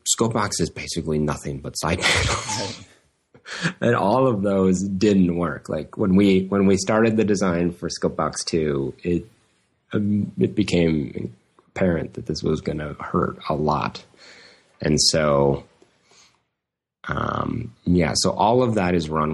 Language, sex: English, male